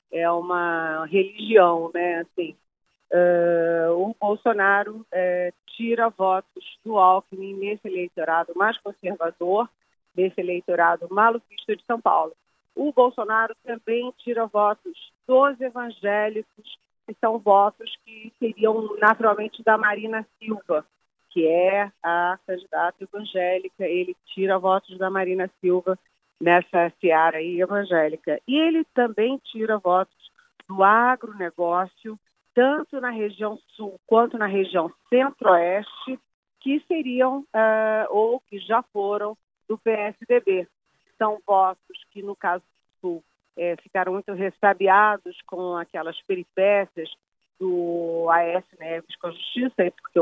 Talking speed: 110 wpm